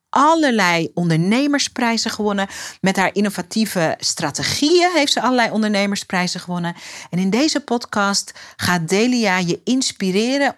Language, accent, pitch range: Dutch, Dutch, 170-240 Hz